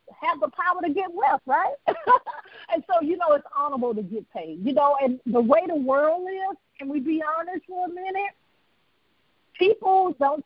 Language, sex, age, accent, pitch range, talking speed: English, female, 50-69, American, 250-335 Hz, 190 wpm